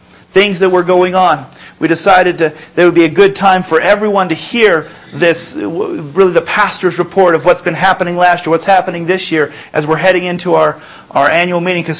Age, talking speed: 40-59, 215 wpm